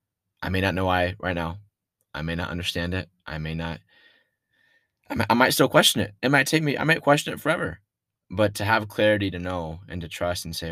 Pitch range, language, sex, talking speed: 80-100 Hz, English, male, 230 wpm